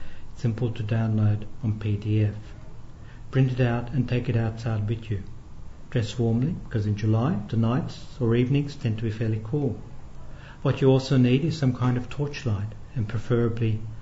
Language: English